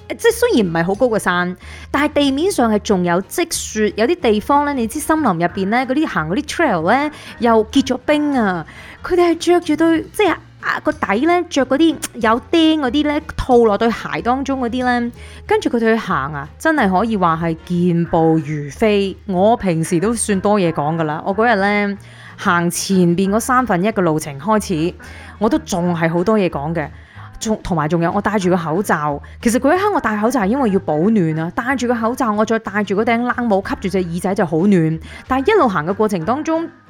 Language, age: Chinese, 20-39